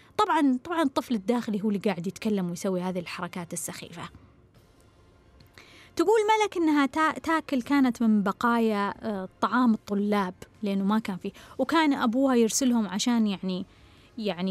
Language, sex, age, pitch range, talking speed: Arabic, female, 20-39, 190-245 Hz, 125 wpm